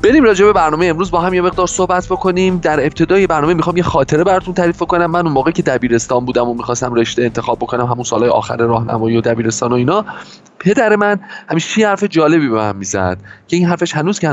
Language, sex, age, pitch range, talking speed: Persian, male, 30-49, 105-165 Hz, 220 wpm